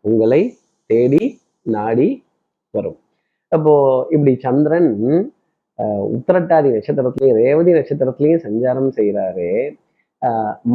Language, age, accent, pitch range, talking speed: Tamil, 30-49, native, 125-165 Hz, 80 wpm